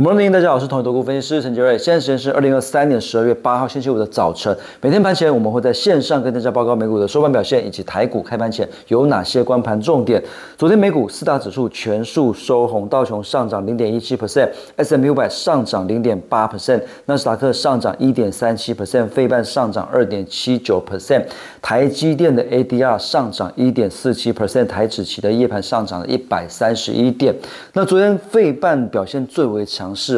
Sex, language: male, Chinese